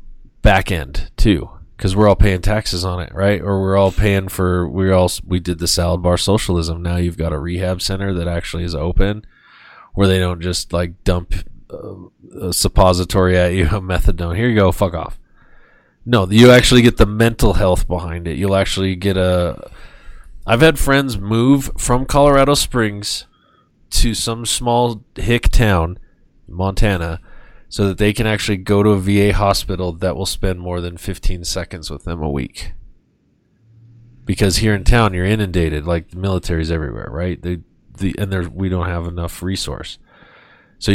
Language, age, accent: English, 20-39, American